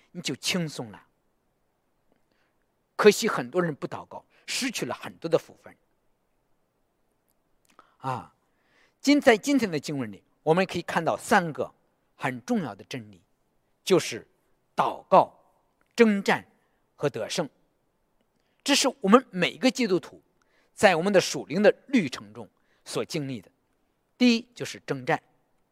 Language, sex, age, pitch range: English, male, 50-69, 155-260 Hz